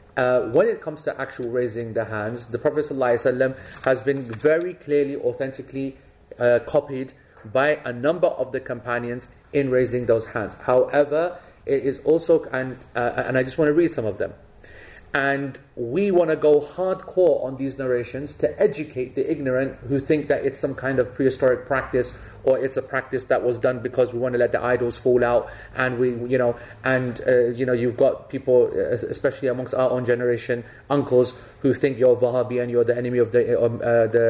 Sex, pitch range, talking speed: male, 125-160 Hz, 190 wpm